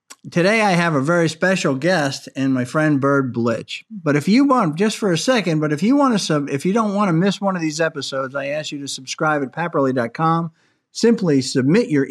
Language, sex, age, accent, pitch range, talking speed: English, male, 50-69, American, 130-180 Hz, 230 wpm